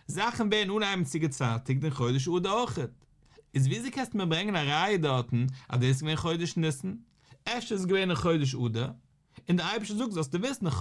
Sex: male